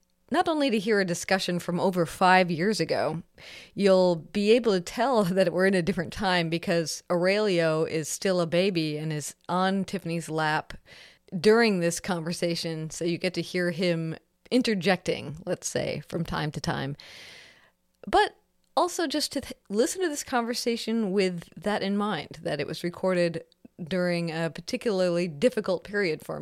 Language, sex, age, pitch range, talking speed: English, female, 30-49, 165-205 Hz, 160 wpm